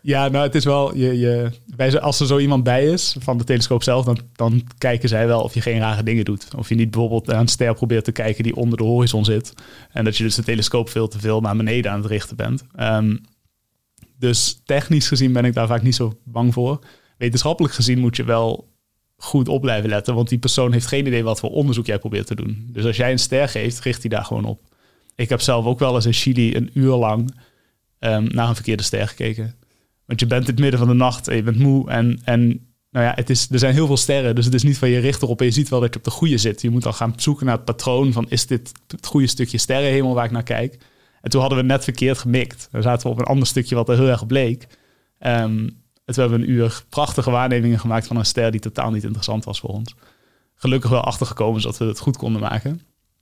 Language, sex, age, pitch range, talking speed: Dutch, male, 30-49, 115-130 Hz, 255 wpm